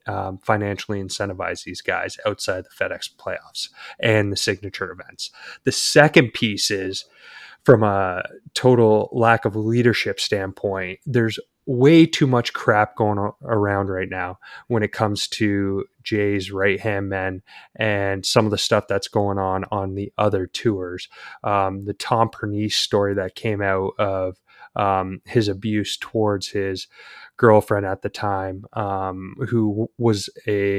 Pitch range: 100-115 Hz